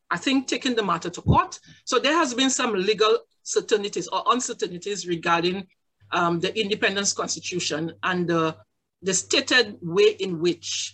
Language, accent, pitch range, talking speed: English, Nigerian, 175-250 Hz, 155 wpm